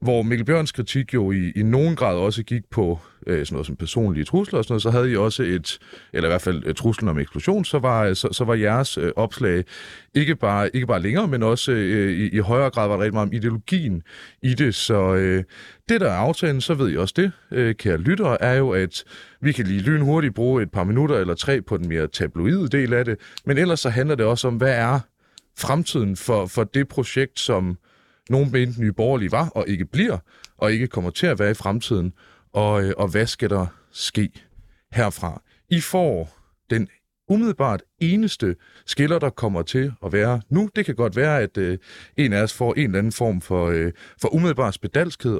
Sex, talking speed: male, 210 wpm